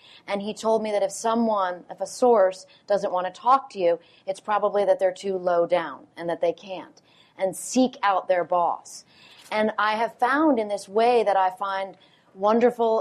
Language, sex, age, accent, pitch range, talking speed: English, female, 30-49, American, 180-215 Hz, 200 wpm